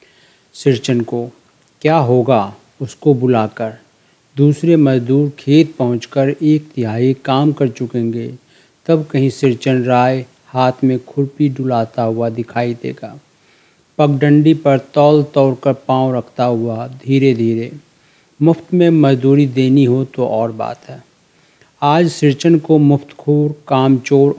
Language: Hindi